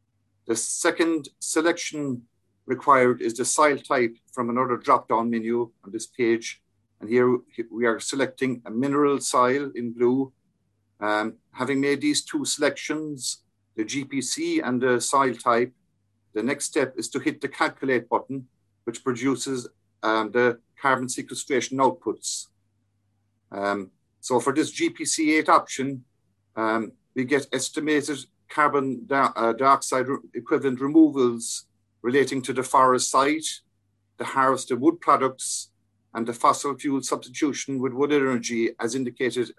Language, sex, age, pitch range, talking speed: English, male, 50-69, 115-140 Hz, 135 wpm